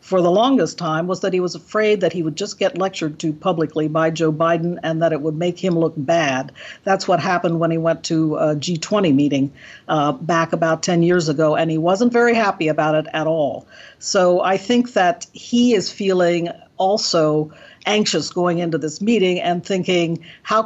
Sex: female